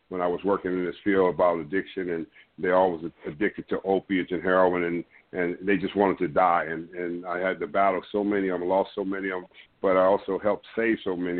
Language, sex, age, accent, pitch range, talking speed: English, male, 50-69, American, 95-105 Hz, 240 wpm